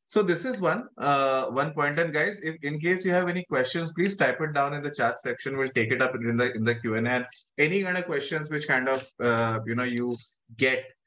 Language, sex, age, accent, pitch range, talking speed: English, male, 20-39, Indian, 120-160 Hz, 235 wpm